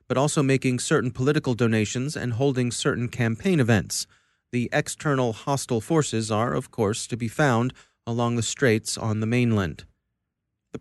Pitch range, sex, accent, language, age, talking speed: 115-140 Hz, male, American, English, 30-49, 155 wpm